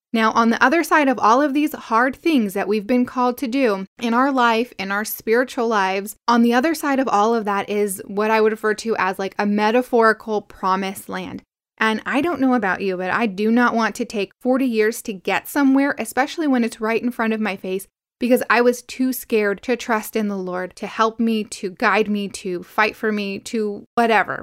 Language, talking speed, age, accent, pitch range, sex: English, 230 wpm, 20-39, American, 205-245 Hz, female